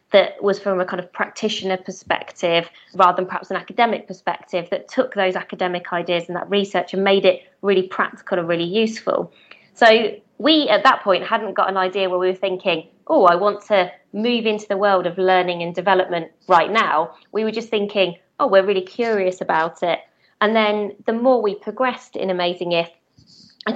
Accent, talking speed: British, 195 wpm